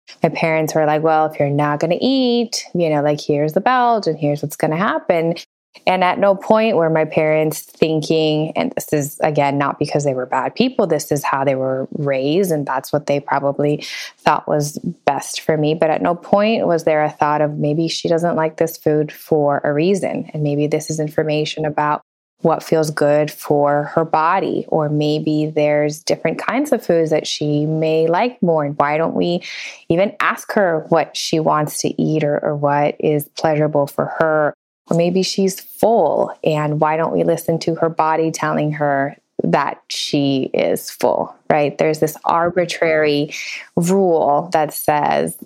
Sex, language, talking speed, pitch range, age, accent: female, English, 190 wpm, 145-165 Hz, 20-39, American